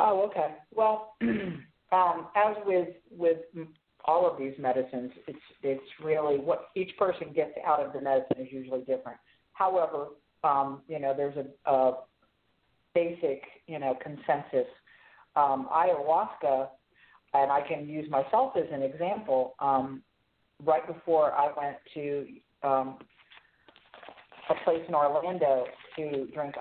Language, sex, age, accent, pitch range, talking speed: English, female, 50-69, American, 135-165 Hz, 135 wpm